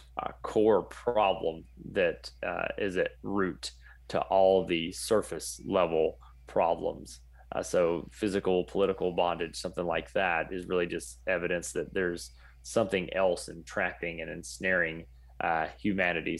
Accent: American